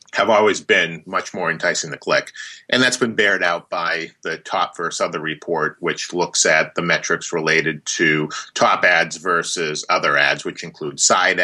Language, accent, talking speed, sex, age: English, American, 180 wpm, male, 30-49